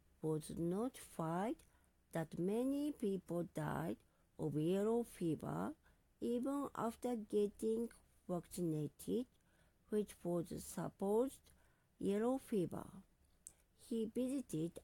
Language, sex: Japanese, female